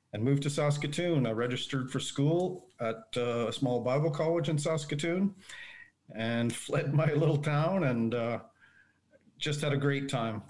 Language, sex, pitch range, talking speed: English, male, 120-145 Hz, 160 wpm